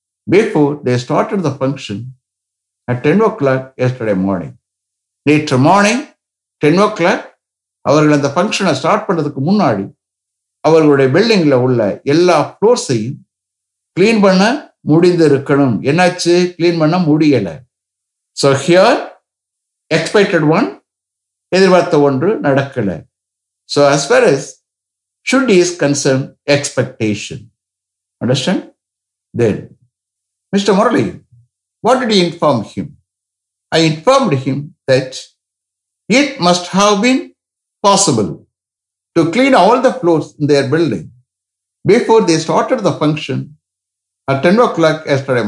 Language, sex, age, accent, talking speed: English, male, 60-79, Indian, 110 wpm